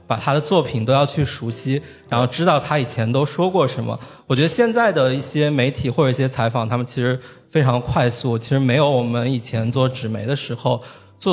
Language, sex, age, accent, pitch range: Chinese, male, 20-39, native, 120-150 Hz